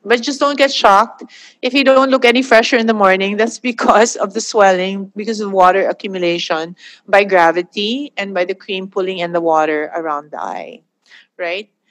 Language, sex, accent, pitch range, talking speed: English, female, Filipino, 185-235 Hz, 185 wpm